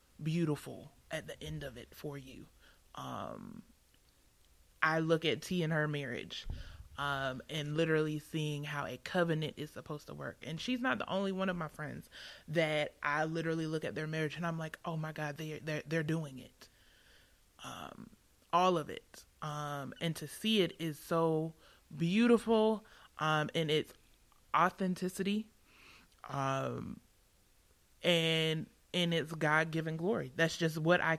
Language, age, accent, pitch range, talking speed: English, 20-39, American, 150-170 Hz, 155 wpm